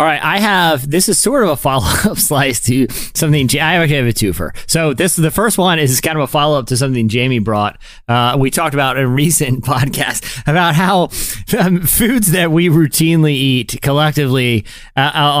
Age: 30-49